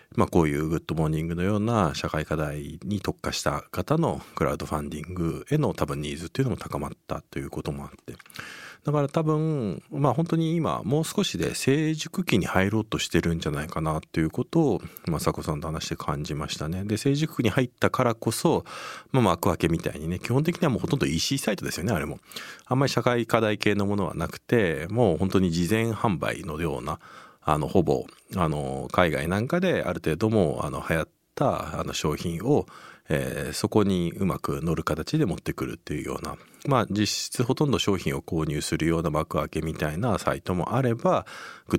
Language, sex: Japanese, male